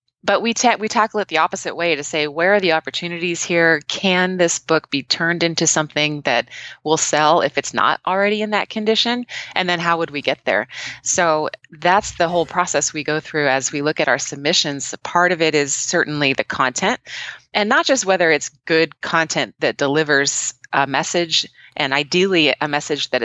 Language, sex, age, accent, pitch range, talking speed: English, female, 20-39, American, 145-180 Hz, 200 wpm